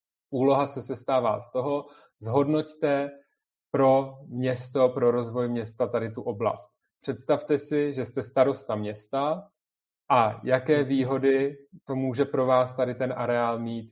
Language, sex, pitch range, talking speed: Czech, male, 120-140 Hz, 135 wpm